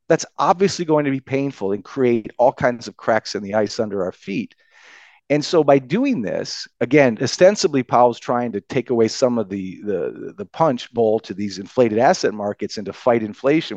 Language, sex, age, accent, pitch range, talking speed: English, male, 40-59, American, 120-165 Hz, 200 wpm